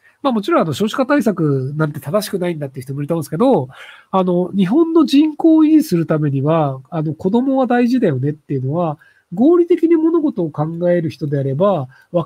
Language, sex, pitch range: Japanese, male, 150-225 Hz